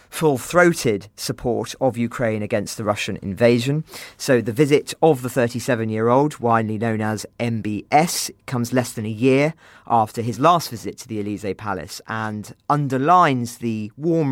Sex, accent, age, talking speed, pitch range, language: male, British, 40-59, 160 wpm, 105-130 Hz, English